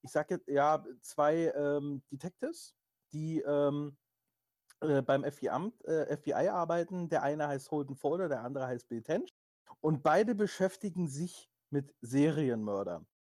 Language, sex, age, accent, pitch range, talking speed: German, male, 30-49, German, 140-180 Hz, 135 wpm